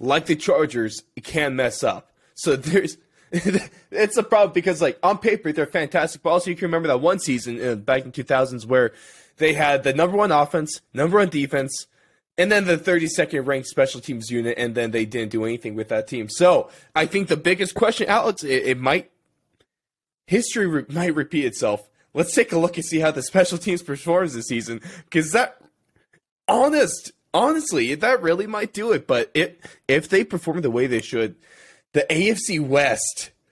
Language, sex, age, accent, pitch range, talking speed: English, male, 20-39, American, 130-180 Hz, 195 wpm